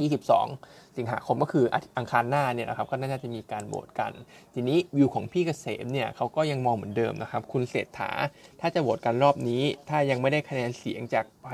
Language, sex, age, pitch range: Thai, male, 20-39, 120-140 Hz